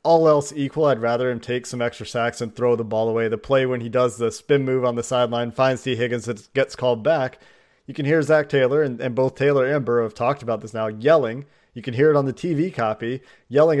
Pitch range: 120-150 Hz